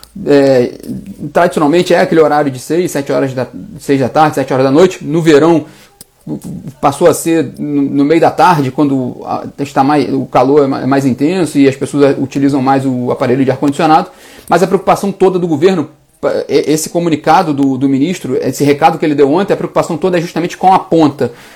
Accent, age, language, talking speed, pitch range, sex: Brazilian, 30-49, Portuguese, 200 wpm, 145-175 Hz, male